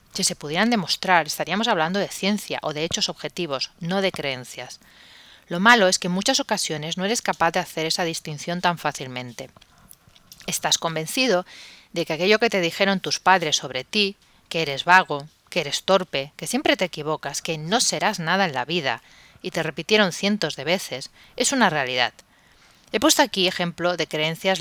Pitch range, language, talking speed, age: 155-195 Hz, Spanish, 185 wpm, 30-49